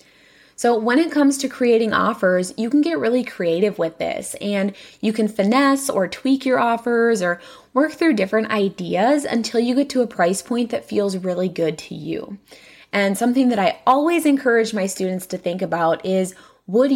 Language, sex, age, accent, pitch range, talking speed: English, female, 20-39, American, 185-250 Hz, 190 wpm